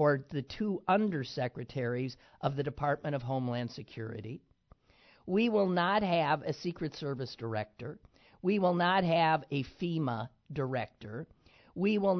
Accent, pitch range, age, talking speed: American, 140-205 Hz, 50-69, 135 wpm